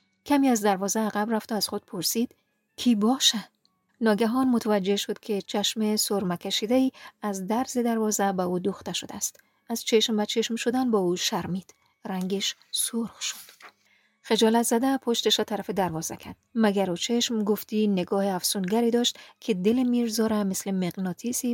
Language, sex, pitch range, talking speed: Persian, female, 195-235 Hz, 160 wpm